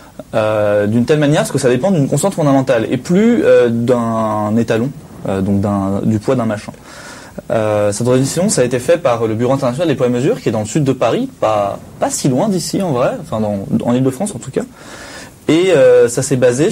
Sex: male